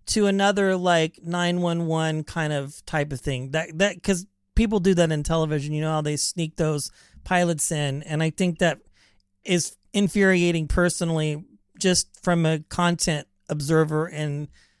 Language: English